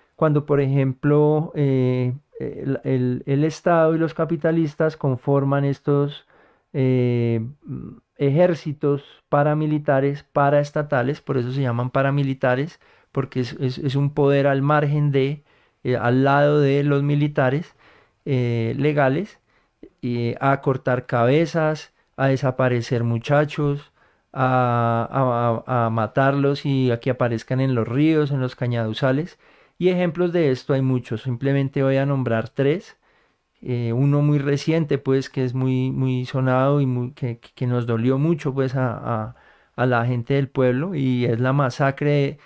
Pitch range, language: 125-145 Hz, Spanish